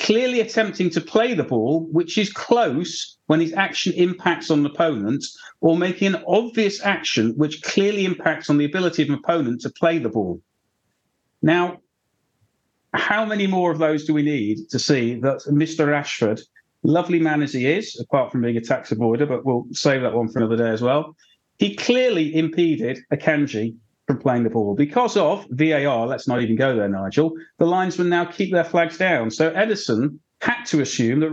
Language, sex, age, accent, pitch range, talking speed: English, male, 40-59, British, 120-170 Hz, 190 wpm